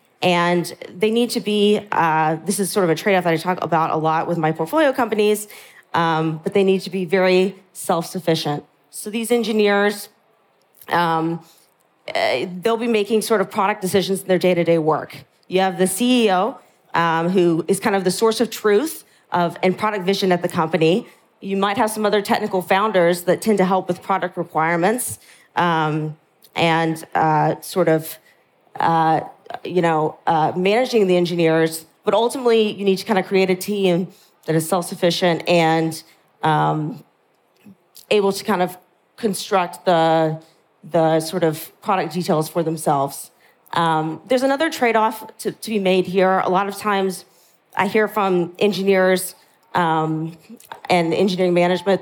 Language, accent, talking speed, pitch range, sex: English, American, 160 wpm, 165-205 Hz, female